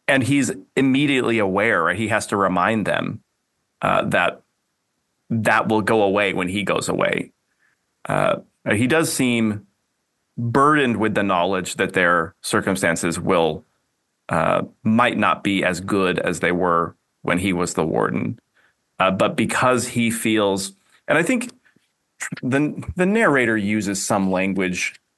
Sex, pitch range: male, 95-125 Hz